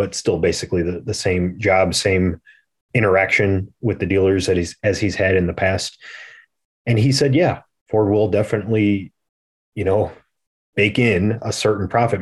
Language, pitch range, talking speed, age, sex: English, 85-100 Hz, 165 wpm, 30-49, male